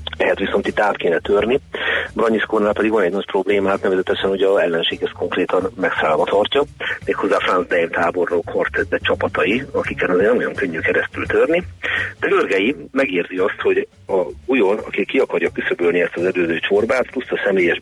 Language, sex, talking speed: Hungarian, male, 170 wpm